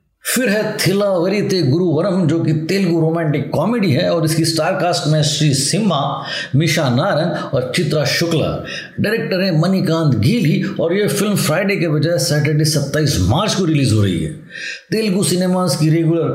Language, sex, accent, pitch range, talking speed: Hindi, male, native, 155-185 Hz, 165 wpm